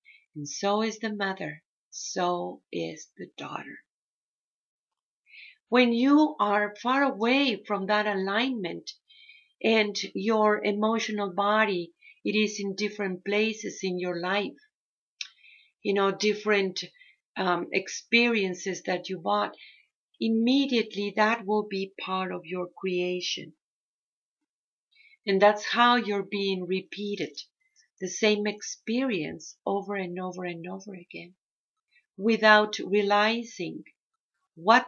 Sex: female